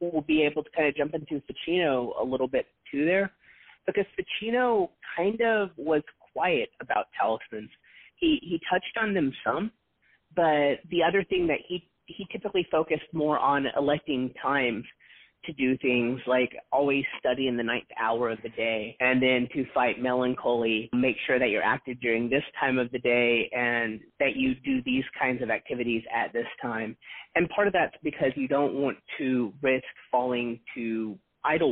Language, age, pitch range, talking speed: English, 30-49, 120-155 Hz, 180 wpm